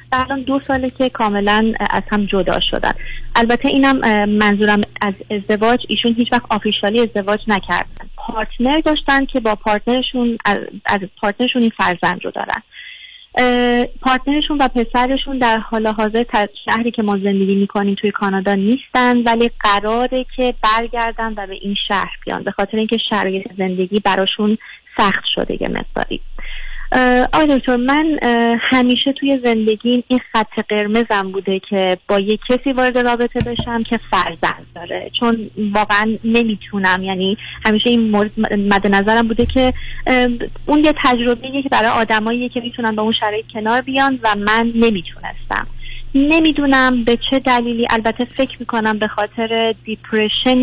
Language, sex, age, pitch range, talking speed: Persian, female, 30-49, 210-250 Hz, 140 wpm